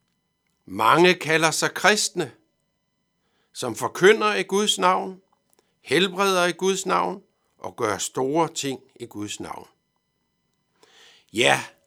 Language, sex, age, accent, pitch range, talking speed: Danish, male, 60-79, native, 130-185 Hz, 105 wpm